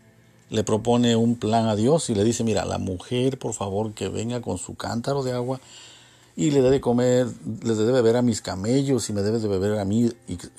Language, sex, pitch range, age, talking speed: Spanish, male, 100-130 Hz, 50-69, 230 wpm